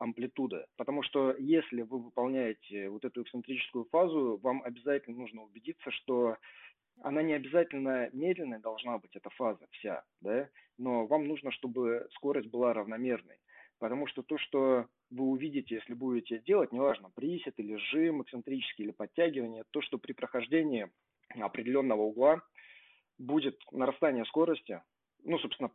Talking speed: 140 wpm